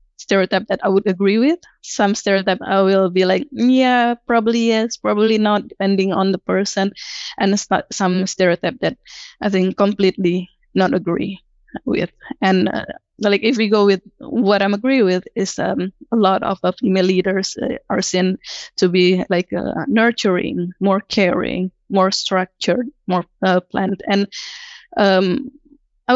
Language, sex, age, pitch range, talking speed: English, female, 20-39, 185-225 Hz, 160 wpm